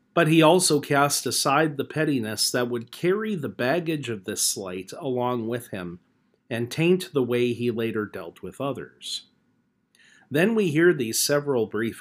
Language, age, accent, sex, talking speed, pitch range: English, 40-59, American, male, 165 wpm, 120-160 Hz